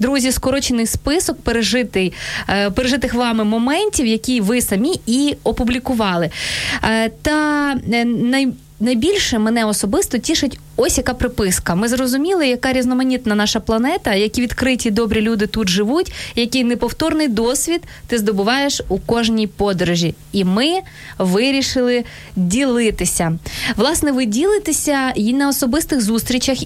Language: Ukrainian